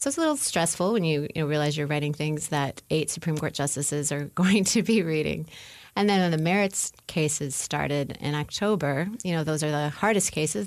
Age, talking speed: 30-49, 215 wpm